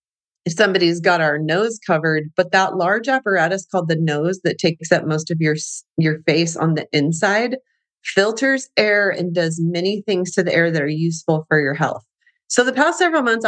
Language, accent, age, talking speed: English, American, 30-49, 195 wpm